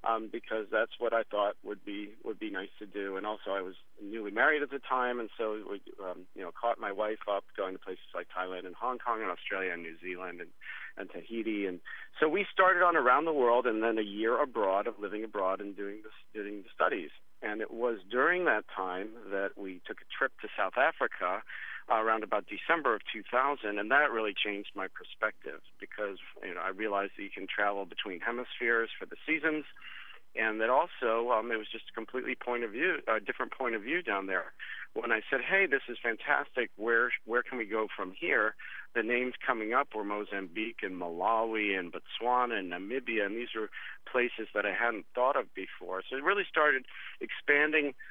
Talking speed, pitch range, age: 215 wpm, 100-120 Hz, 40-59